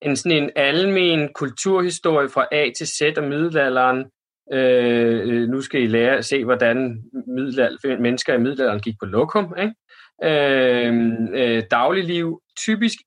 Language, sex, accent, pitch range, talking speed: Danish, male, native, 115-160 Hz, 135 wpm